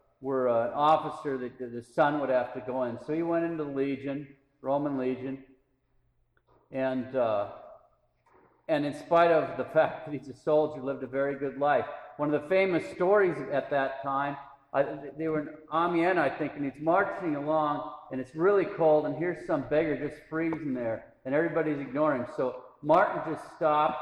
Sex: male